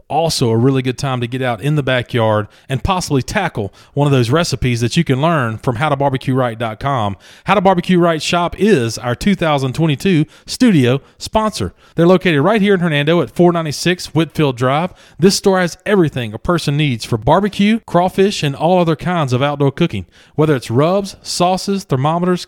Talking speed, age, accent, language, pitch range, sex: 175 wpm, 40-59, American, English, 125-175 Hz, male